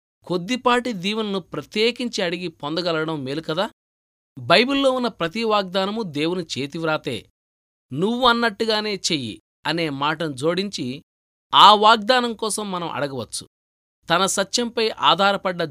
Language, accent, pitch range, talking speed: Telugu, native, 130-215 Hz, 95 wpm